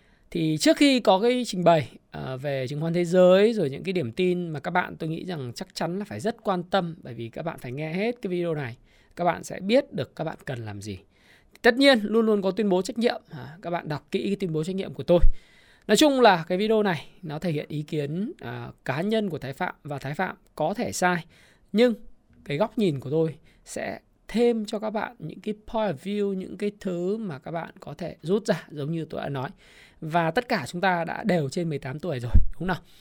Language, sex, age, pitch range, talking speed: Vietnamese, male, 20-39, 150-205 Hz, 250 wpm